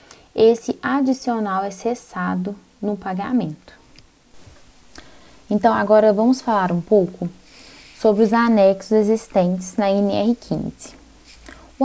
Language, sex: Portuguese, female